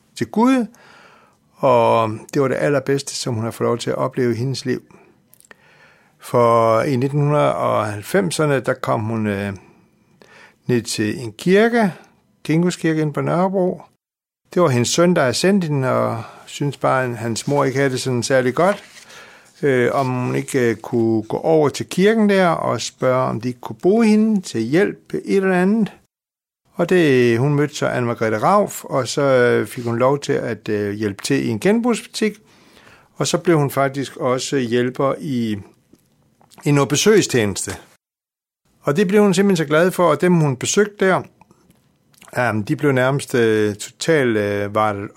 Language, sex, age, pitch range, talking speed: Danish, male, 60-79, 120-180 Hz, 165 wpm